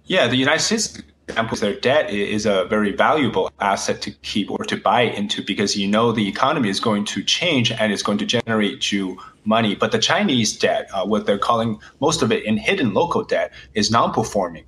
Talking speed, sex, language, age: 215 wpm, male, English, 30-49